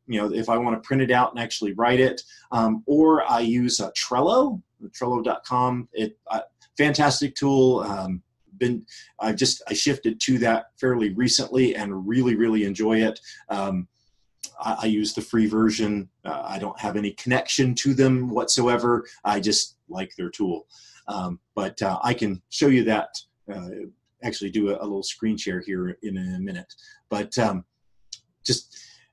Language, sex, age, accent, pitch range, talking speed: English, male, 30-49, American, 105-130 Hz, 175 wpm